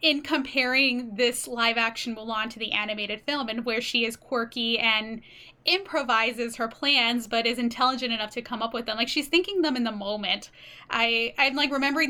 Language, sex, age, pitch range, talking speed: English, female, 10-29, 230-285 Hz, 185 wpm